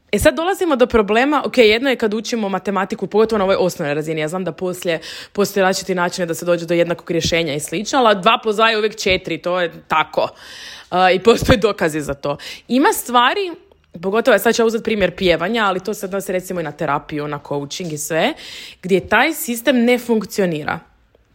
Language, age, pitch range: Croatian, 20-39, 175-235 Hz